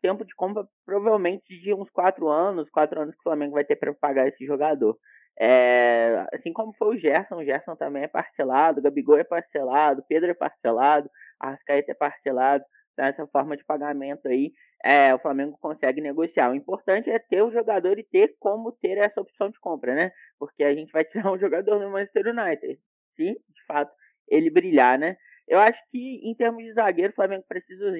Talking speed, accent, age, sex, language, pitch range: 200 wpm, Brazilian, 20-39, male, Portuguese, 145-200 Hz